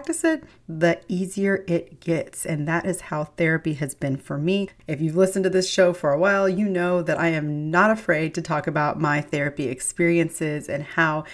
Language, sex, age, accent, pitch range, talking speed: English, female, 30-49, American, 155-200 Hz, 200 wpm